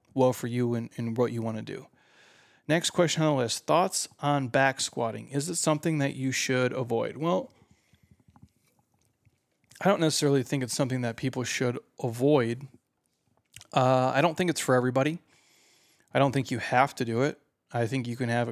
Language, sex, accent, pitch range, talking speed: English, male, American, 120-140 Hz, 180 wpm